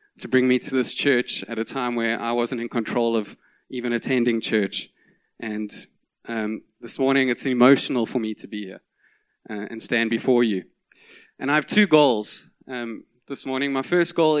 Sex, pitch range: male, 115-135 Hz